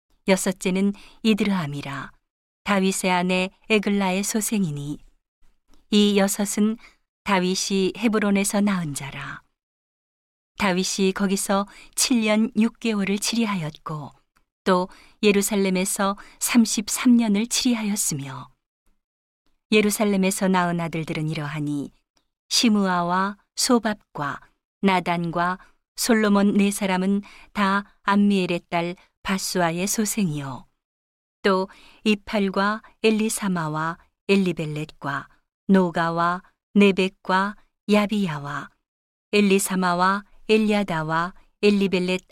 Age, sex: 40-59, female